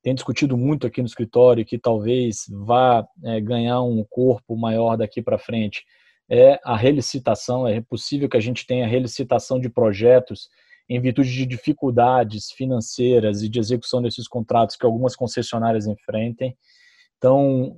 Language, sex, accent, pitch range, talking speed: Portuguese, male, Brazilian, 120-135 Hz, 150 wpm